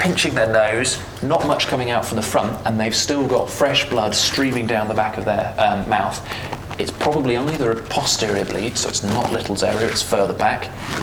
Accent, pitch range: British, 100-120 Hz